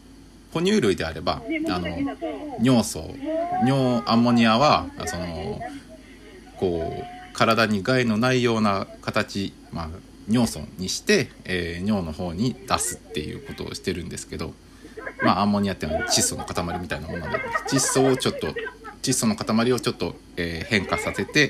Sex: male